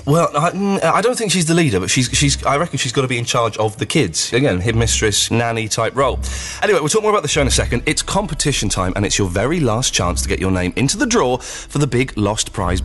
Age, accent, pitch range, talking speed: 30-49, British, 100-140 Hz, 270 wpm